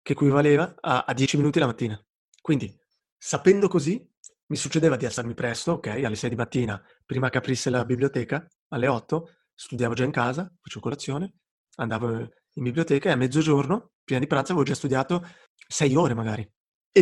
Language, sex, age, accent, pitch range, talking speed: Italian, male, 30-49, native, 130-165 Hz, 175 wpm